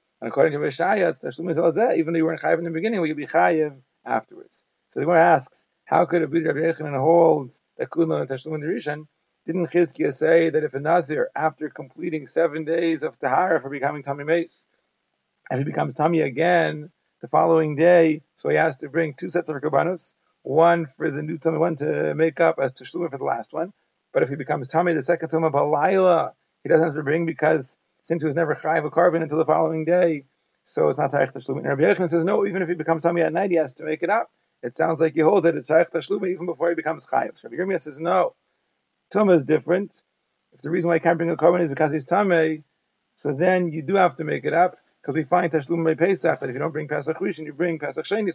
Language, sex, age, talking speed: English, male, 40-59, 235 wpm